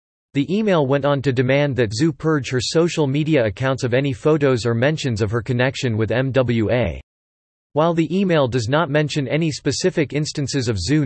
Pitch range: 120-150 Hz